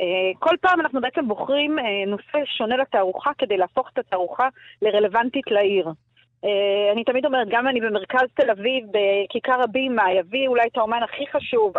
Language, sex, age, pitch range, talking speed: Hebrew, female, 30-49, 205-290 Hz, 155 wpm